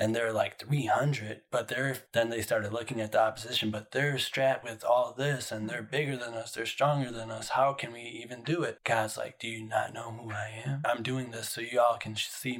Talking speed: 250 wpm